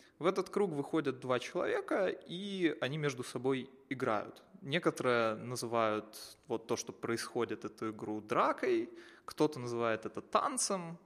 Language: Ukrainian